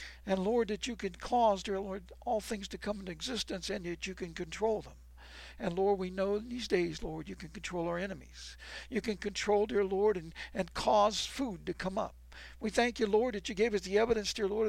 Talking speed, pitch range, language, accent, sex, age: 230 wpm, 165-215 Hz, English, American, male, 60-79